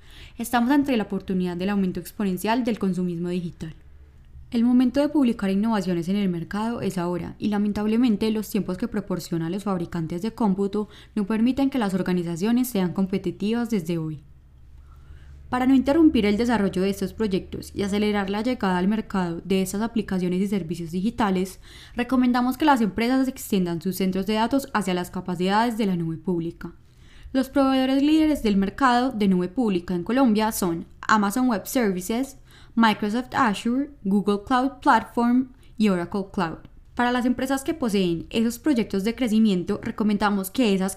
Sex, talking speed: female, 160 wpm